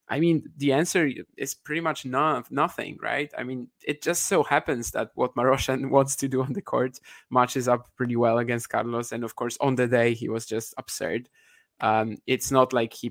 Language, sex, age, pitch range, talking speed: English, male, 20-39, 115-135 Hz, 210 wpm